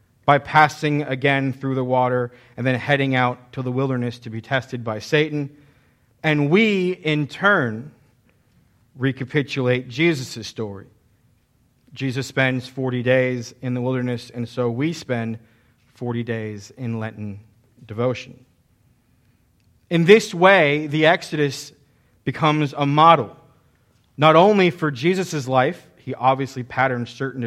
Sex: male